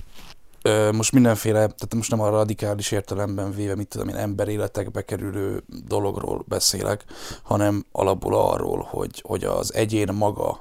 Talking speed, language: 135 wpm, Hungarian